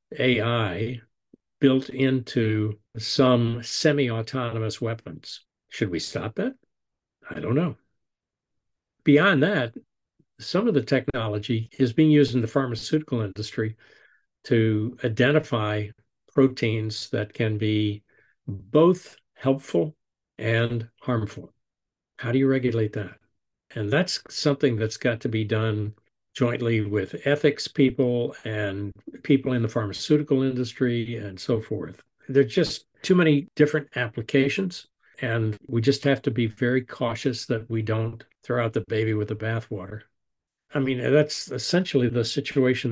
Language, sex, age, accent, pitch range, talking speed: English, male, 60-79, American, 110-140 Hz, 130 wpm